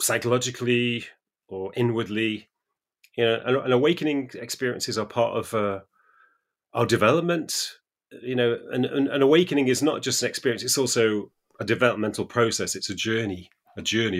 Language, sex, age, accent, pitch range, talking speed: English, male, 30-49, British, 100-130 Hz, 150 wpm